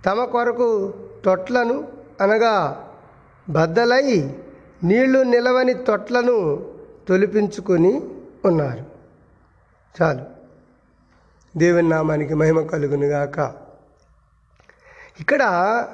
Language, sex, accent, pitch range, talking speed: Telugu, male, native, 165-245 Hz, 60 wpm